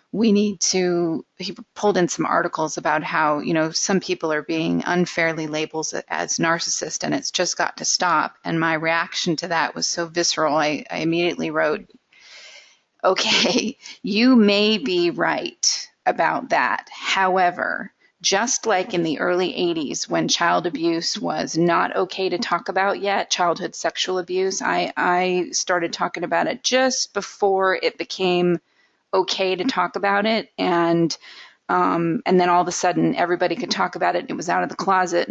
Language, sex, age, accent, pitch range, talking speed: English, female, 30-49, American, 170-205 Hz, 170 wpm